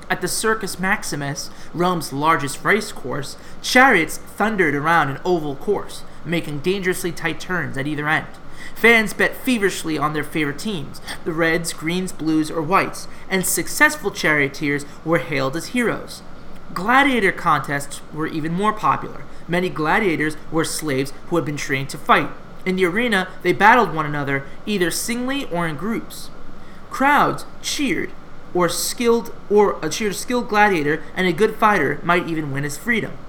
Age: 30-49